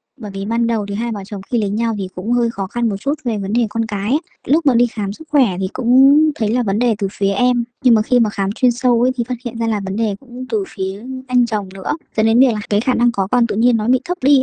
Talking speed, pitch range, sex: 310 wpm, 200-245 Hz, male